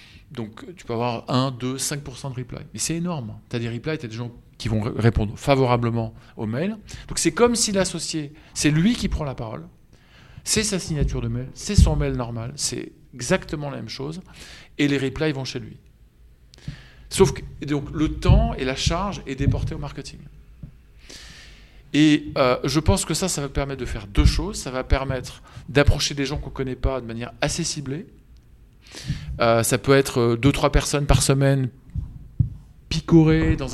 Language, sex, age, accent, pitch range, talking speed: French, male, 40-59, French, 125-150 Hz, 190 wpm